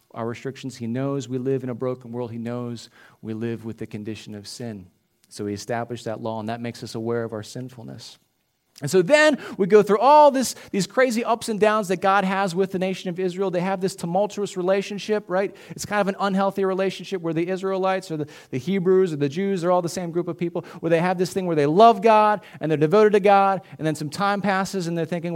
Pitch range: 130-200 Hz